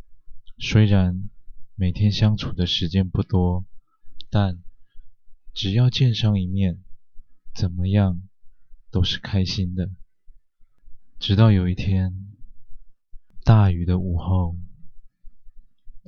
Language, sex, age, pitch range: Chinese, male, 20-39, 95-115 Hz